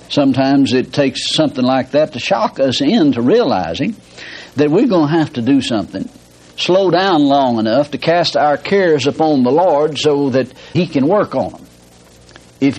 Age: 60-79